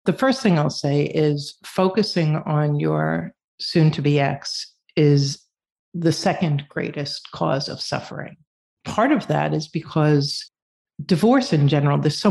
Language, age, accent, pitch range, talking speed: English, 50-69, American, 150-190 Hz, 135 wpm